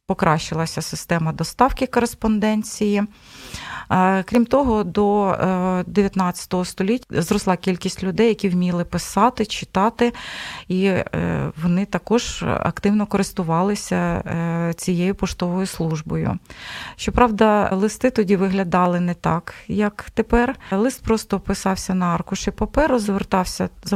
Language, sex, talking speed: Ukrainian, female, 100 wpm